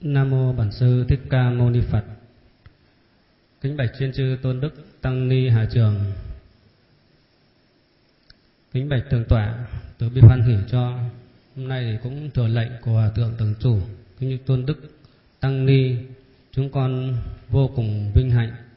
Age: 20-39